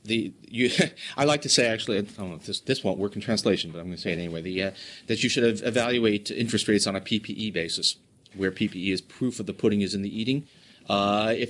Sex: male